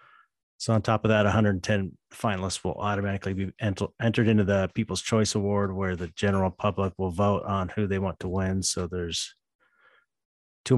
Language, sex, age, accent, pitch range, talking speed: English, male, 30-49, American, 90-110 Hz, 175 wpm